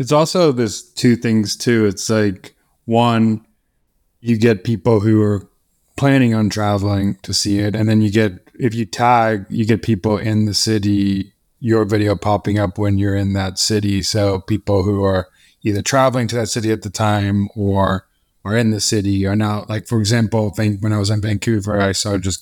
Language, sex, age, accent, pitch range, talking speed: English, male, 20-39, American, 105-120 Hz, 195 wpm